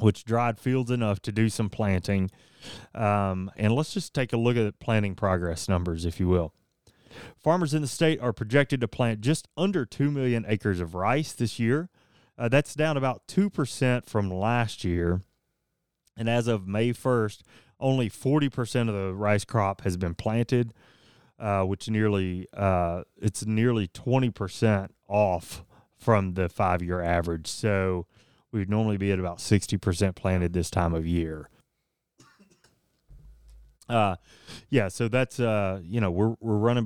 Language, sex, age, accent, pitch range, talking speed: English, male, 30-49, American, 95-125 Hz, 155 wpm